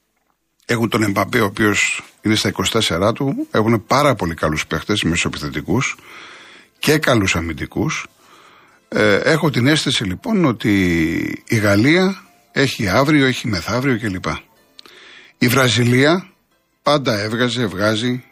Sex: male